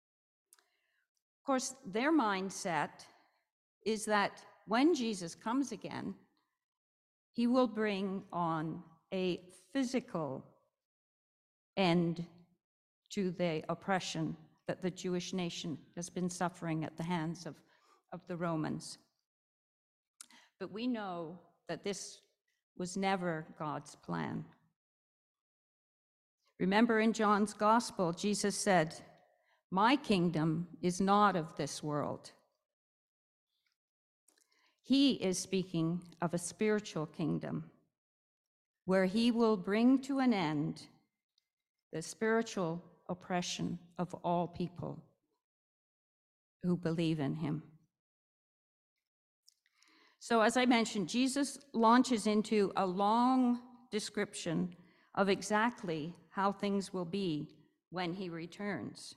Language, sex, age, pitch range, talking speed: English, female, 50-69, 170-220 Hz, 100 wpm